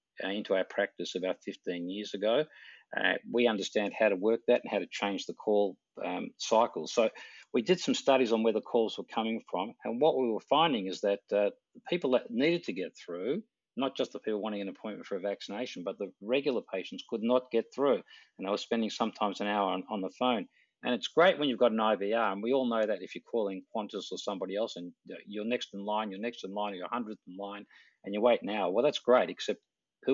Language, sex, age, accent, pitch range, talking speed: English, male, 50-69, Australian, 100-120 Hz, 240 wpm